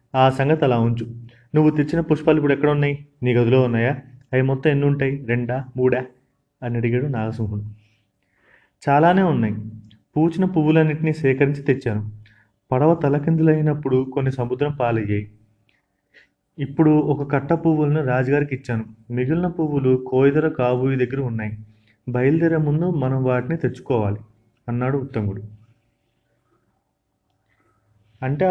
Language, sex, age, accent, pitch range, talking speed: Telugu, male, 30-49, native, 115-145 Hz, 110 wpm